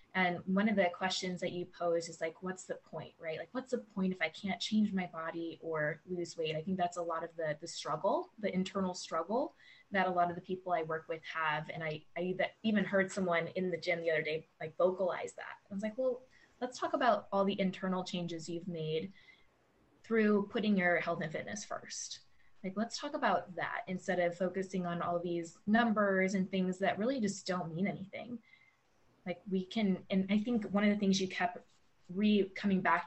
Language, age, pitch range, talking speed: English, 20-39, 175-220 Hz, 215 wpm